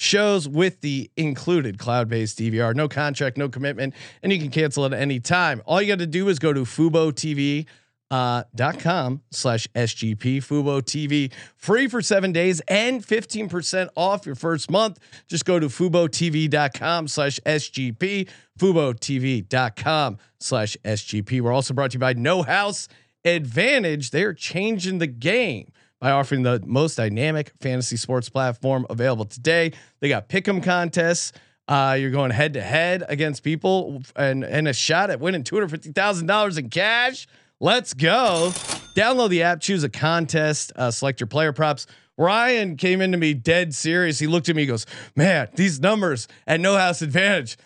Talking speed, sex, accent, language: 160 wpm, male, American, English